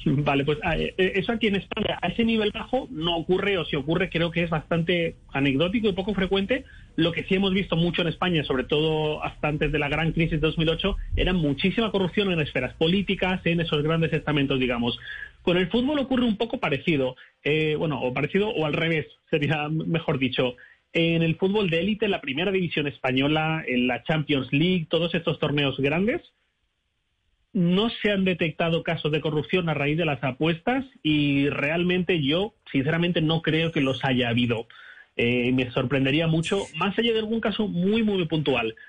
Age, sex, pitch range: 30-49, male, 150-190 Hz